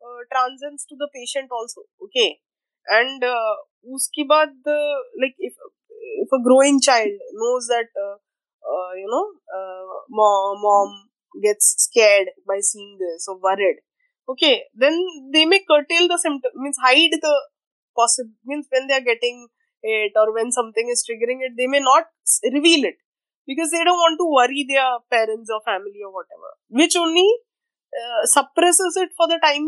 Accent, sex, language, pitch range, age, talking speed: native, female, Hindi, 235-335 Hz, 20-39, 165 wpm